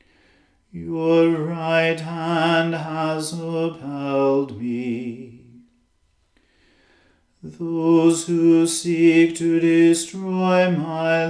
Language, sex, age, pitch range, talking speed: English, male, 40-59, 155-165 Hz, 65 wpm